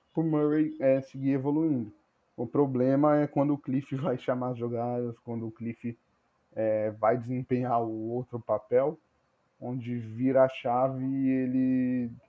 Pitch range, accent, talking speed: 115-135 Hz, Brazilian, 140 wpm